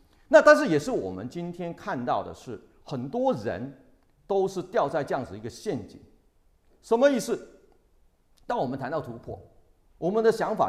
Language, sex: Chinese, male